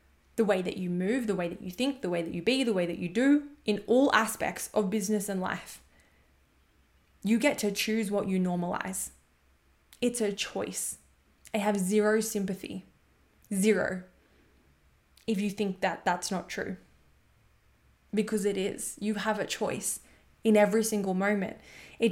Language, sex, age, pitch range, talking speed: English, female, 20-39, 185-220 Hz, 165 wpm